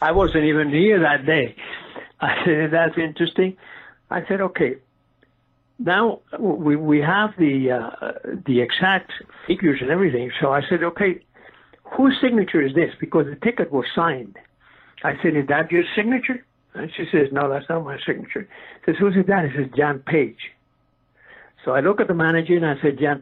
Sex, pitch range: male, 145-190 Hz